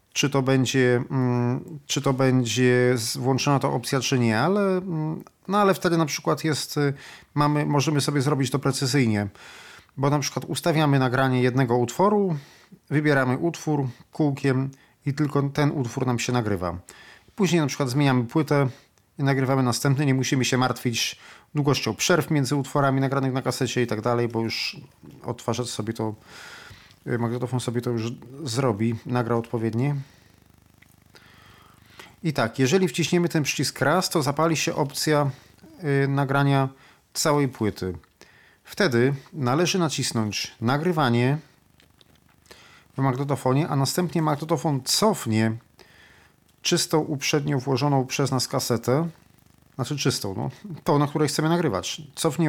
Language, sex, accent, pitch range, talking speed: Polish, male, native, 125-150 Hz, 130 wpm